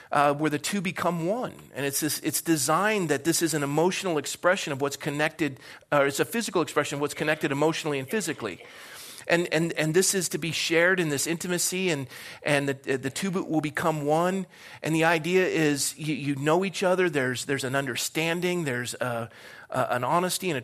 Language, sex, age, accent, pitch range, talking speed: English, male, 40-59, American, 145-190 Hz, 205 wpm